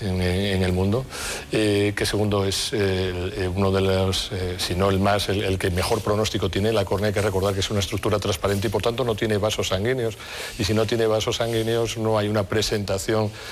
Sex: male